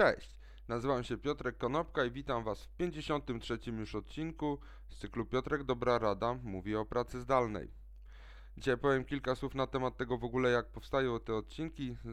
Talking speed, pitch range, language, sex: 170 wpm, 110-130 Hz, Polish, male